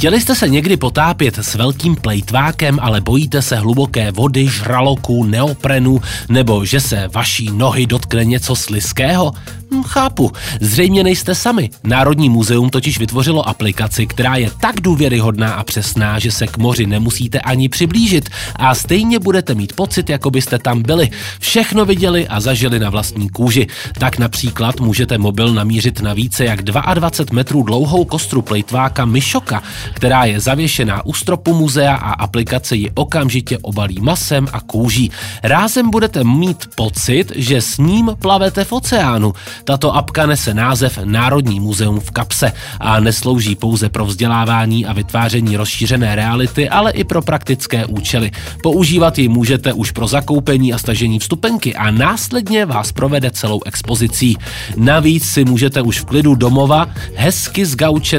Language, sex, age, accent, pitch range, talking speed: Czech, male, 30-49, native, 110-145 Hz, 150 wpm